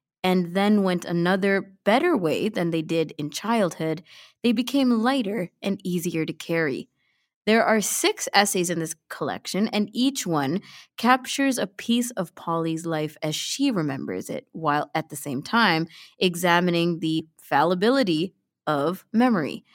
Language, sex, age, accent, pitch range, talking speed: English, female, 20-39, American, 165-225 Hz, 145 wpm